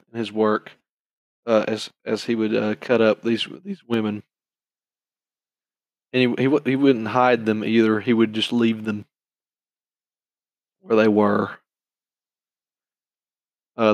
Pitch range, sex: 110-125 Hz, male